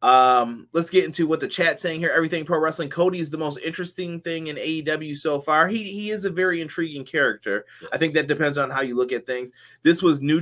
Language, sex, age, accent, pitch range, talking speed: English, male, 20-39, American, 125-165 Hz, 240 wpm